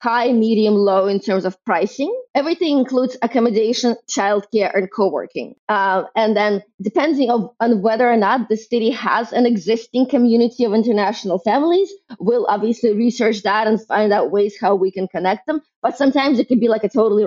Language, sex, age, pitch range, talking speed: English, female, 20-39, 215-250 Hz, 180 wpm